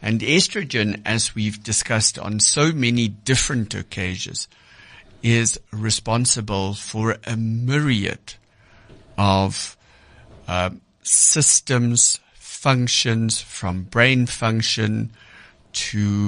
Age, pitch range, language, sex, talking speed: 60-79, 100-125 Hz, English, male, 85 wpm